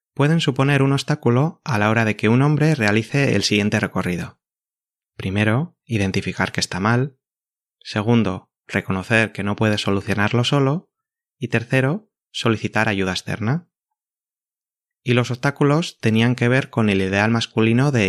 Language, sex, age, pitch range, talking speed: Spanish, male, 20-39, 105-135 Hz, 145 wpm